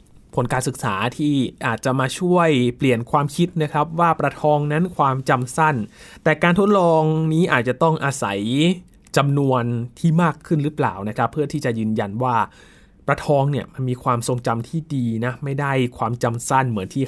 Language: Thai